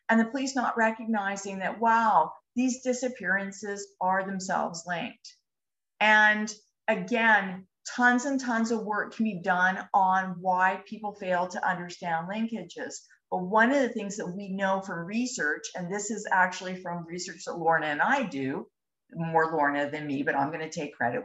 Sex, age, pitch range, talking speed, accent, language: female, 50-69, 185-225 Hz, 165 wpm, American, English